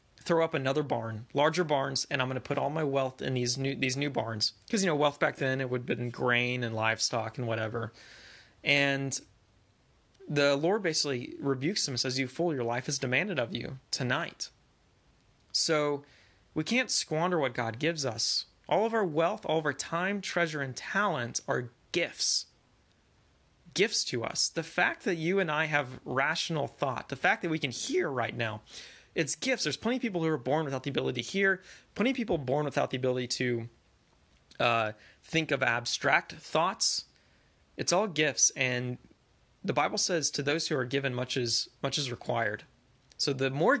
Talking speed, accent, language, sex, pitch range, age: 190 wpm, American, English, male, 120-160 Hz, 30-49